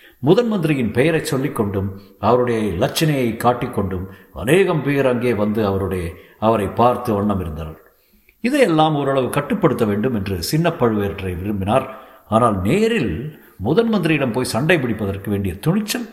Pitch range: 100-150 Hz